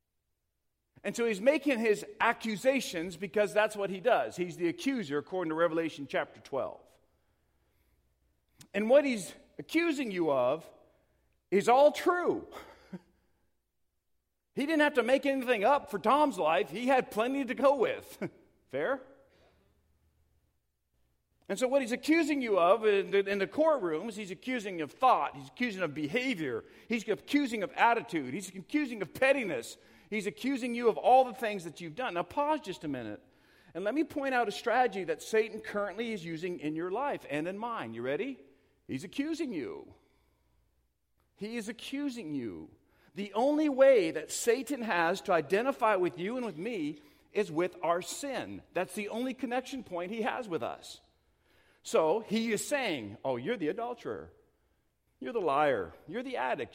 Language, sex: English, male